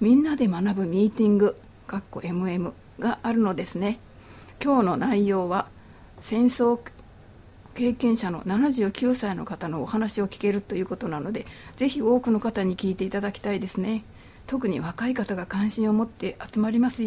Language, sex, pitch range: Japanese, female, 185-230 Hz